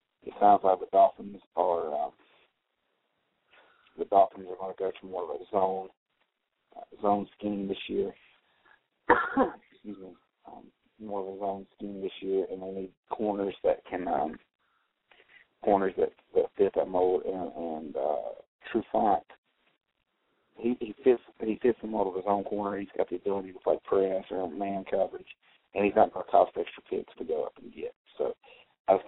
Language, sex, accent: English, male, American